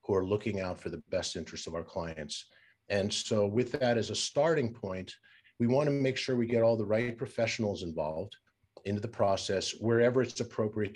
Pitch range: 105-115 Hz